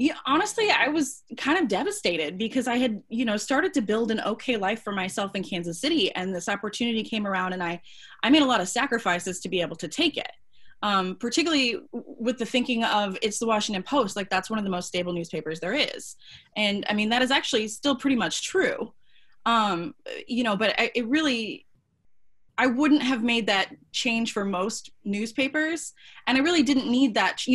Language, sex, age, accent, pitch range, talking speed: English, female, 20-39, American, 185-255 Hz, 205 wpm